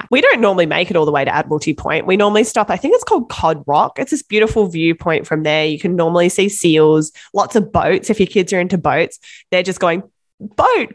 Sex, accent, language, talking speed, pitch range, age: female, Australian, English, 240 wpm, 160-195 Hz, 20-39